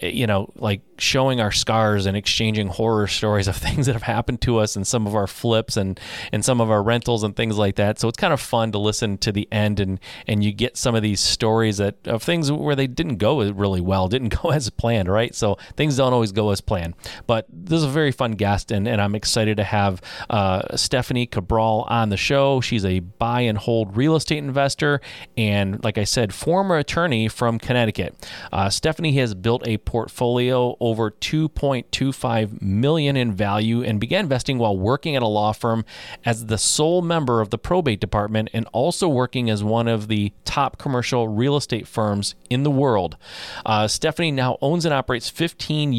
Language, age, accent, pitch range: English, 30-49, American, 105-130 Hz